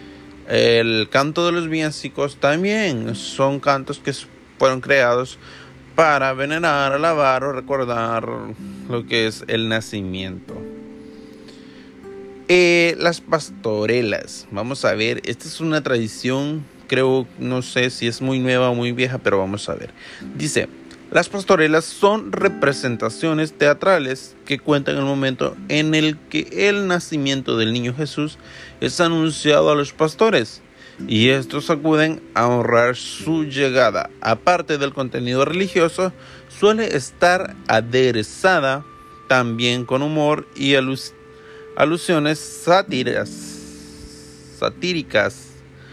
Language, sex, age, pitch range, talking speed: Spanish, male, 30-49, 115-155 Hz, 115 wpm